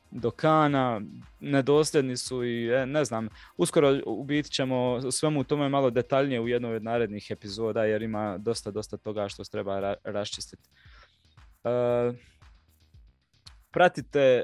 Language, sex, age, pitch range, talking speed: Croatian, male, 20-39, 110-135 Hz, 130 wpm